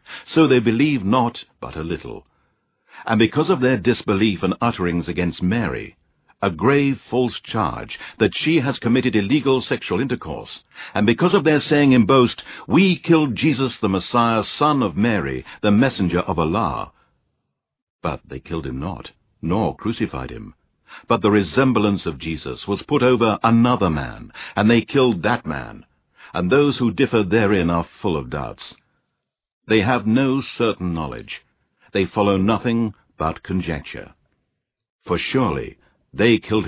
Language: English